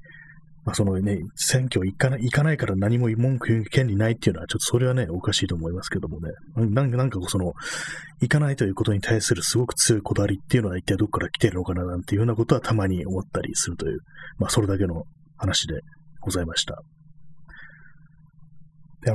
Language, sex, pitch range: Japanese, male, 95-145 Hz